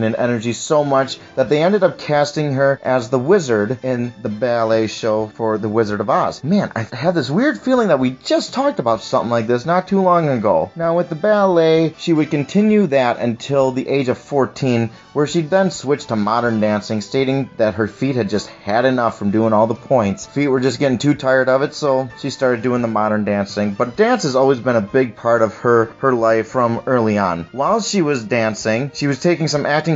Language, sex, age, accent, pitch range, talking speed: English, male, 30-49, American, 110-145 Hz, 225 wpm